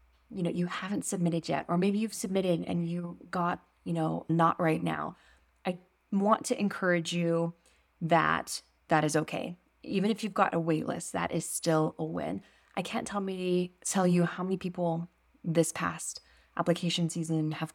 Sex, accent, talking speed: female, American, 175 wpm